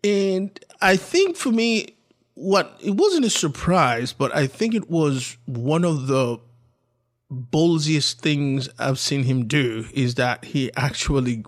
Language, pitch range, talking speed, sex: English, 120-155 Hz, 145 wpm, male